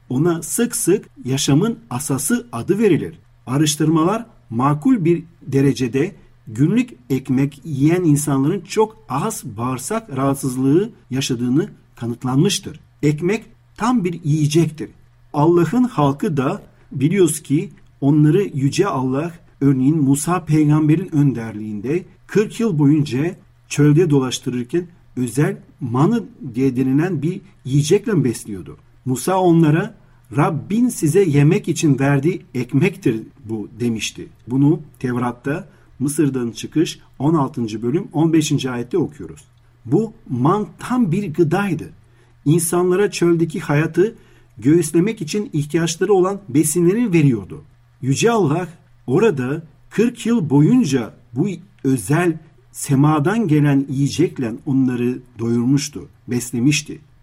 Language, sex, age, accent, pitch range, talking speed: Turkish, male, 50-69, native, 130-170 Hz, 100 wpm